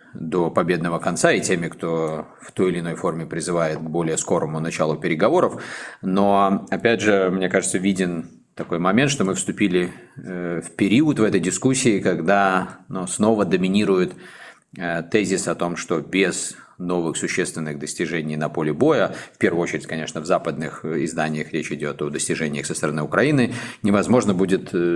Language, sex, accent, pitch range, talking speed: Russian, male, native, 80-100 Hz, 155 wpm